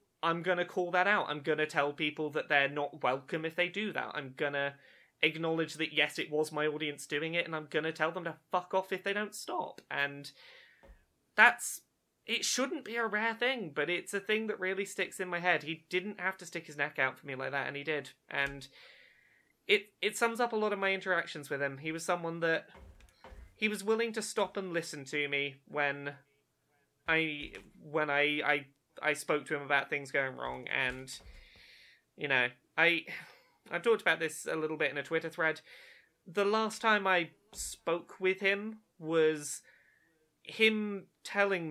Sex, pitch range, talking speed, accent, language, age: male, 150-190 Hz, 200 wpm, British, English, 20-39